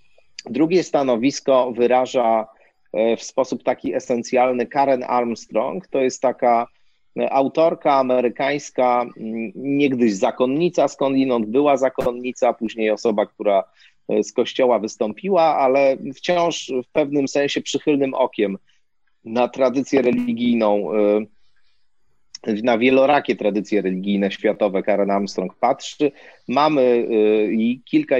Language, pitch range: Polish, 110-140 Hz